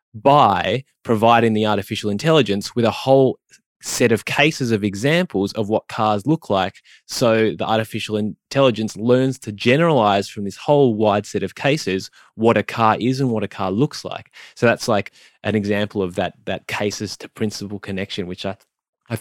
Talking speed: 180 wpm